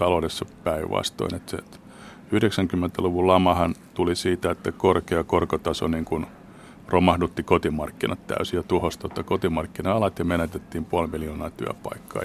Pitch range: 85-95 Hz